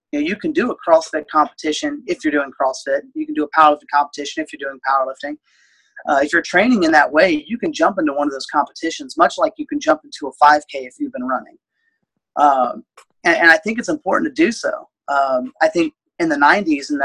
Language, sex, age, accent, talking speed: English, male, 30-49, American, 230 wpm